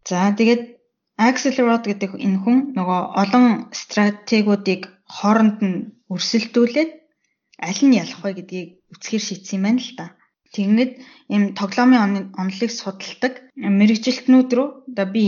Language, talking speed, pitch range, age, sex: Russian, 50 wpm, 185-225 Hz, 20-39, female